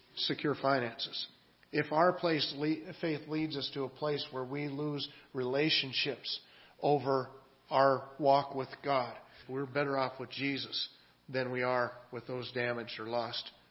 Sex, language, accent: male, English, American